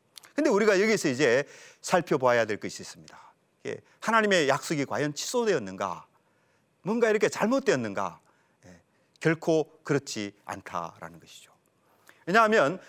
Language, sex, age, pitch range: Korean, male, 40-59, 140-215 Hz